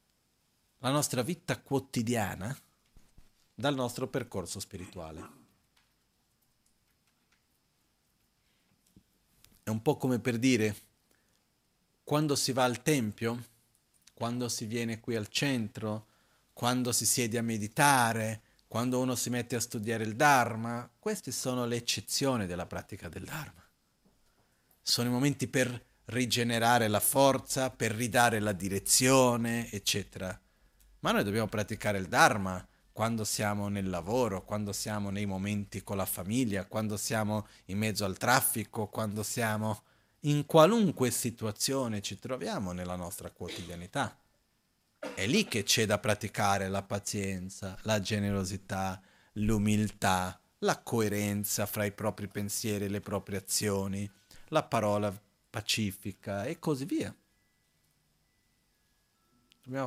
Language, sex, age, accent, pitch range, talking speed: Italian, male, 40-59, native, 100-120 Hz, 120 wpm